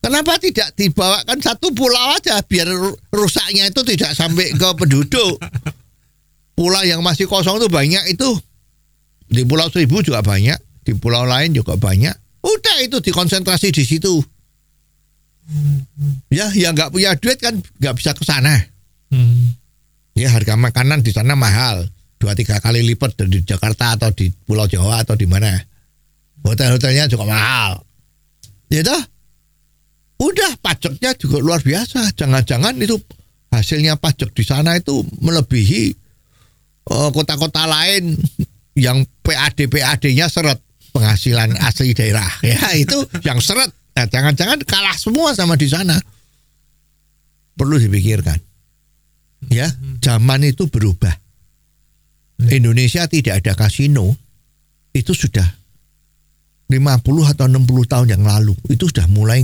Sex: male